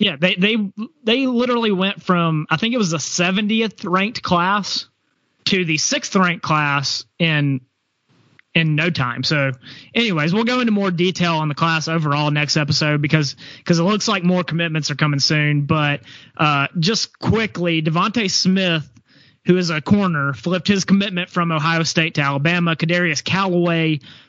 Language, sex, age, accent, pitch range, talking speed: English, male, 30-49, American, 155-195 Hz, 165 wpm